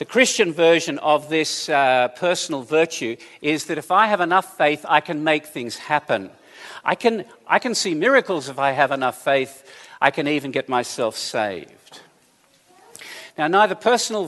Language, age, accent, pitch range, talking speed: English, 50-69, Australian, 130-170 Hz, 165 wpm